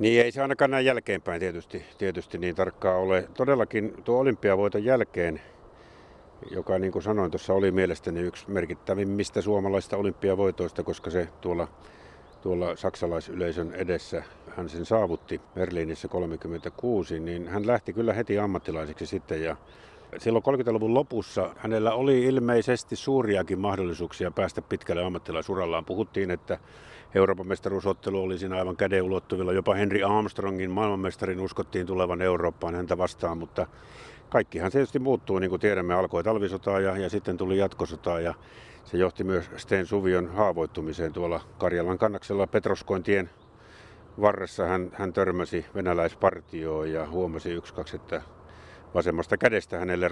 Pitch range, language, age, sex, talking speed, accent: 90-100 Hz, Finnish, 50-69, male, 135 wpm, native